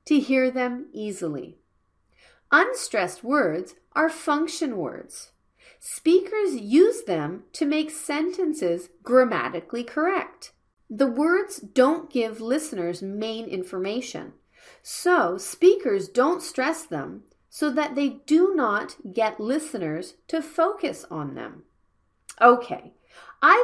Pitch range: 225-350 Hz